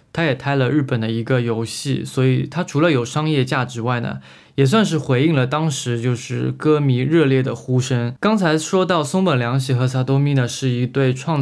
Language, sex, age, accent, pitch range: Chinese, male, 20-39, native, 125-155 Hz